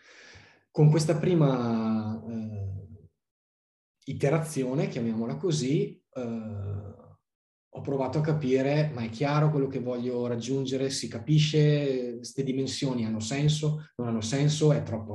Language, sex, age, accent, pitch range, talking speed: Italian, male, 20-39, native, 115-140 Hz, 120 wpm